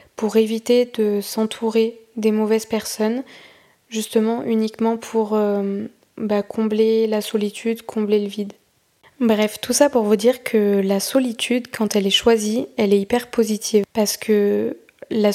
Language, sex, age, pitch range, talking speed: French, female, 20-39, 210-230 Hz, 150 wpm